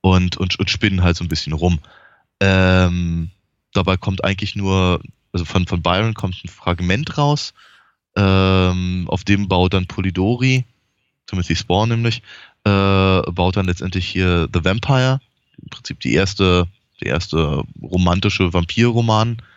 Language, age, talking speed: German, 20-39, 145 wpm